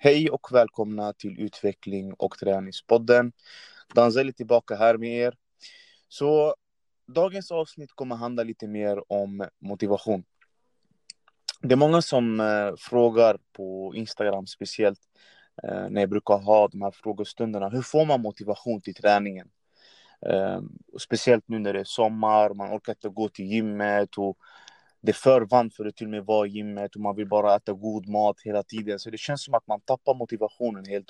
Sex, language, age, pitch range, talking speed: male, Swedish, 20-39, 100-120 Hz, 160 wpm